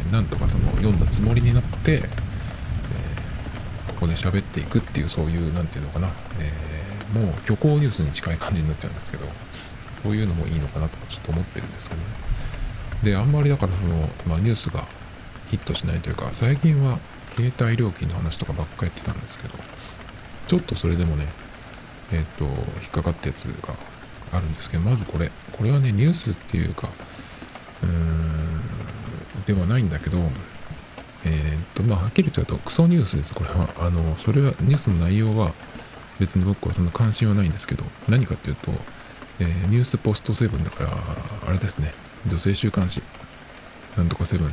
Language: Japanese